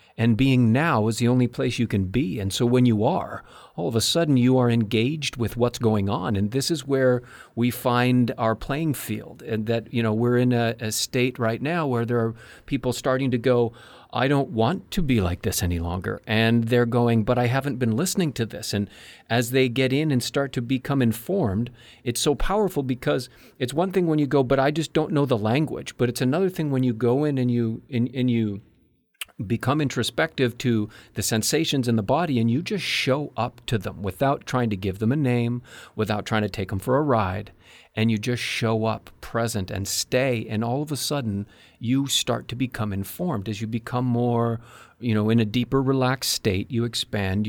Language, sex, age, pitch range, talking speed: English, male, 40-59, 110-130 Hz, 220 wpm